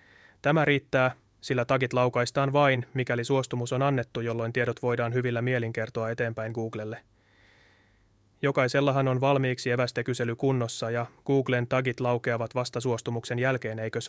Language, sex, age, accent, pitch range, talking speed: Finnish, male, 20-39, native, 115-130 Hz, 130 wpm